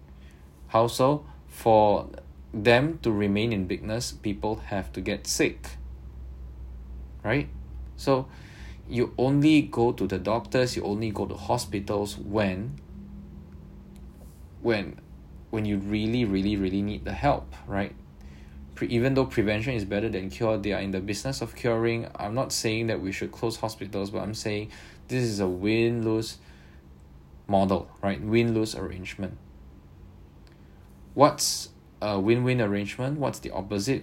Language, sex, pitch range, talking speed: English, male, 70-110 Hz, 140 wpm